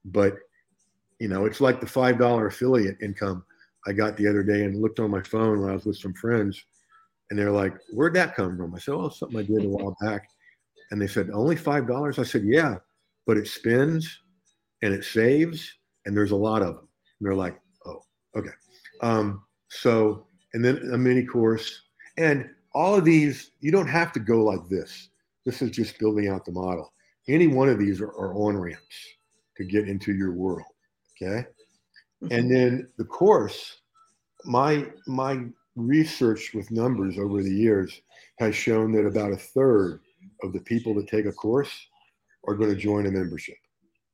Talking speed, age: 190 wpm, 50-69